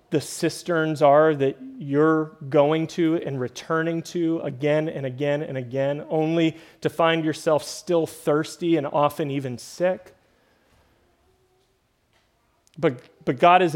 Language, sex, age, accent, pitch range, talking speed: English, male, 30-49, American, 135-165 Hz, 125 wpm